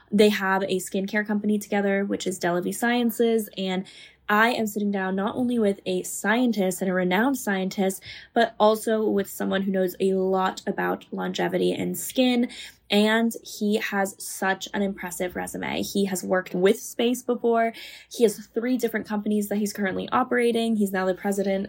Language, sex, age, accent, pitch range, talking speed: English, female, 10-29, American, 185-220 Hz, 175 wpm